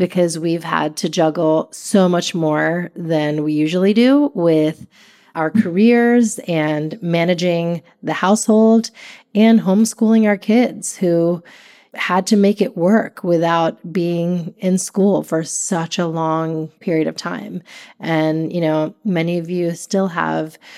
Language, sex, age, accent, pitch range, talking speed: English, female, 30-49, American, 165-195 Hz, 140 wpm